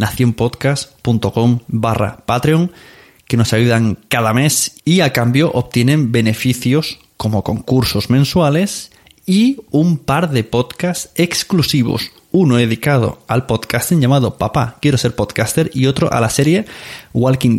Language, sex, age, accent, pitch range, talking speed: Spanish, male, 20-39, Spanish, 115-150 Hz, 125 wpm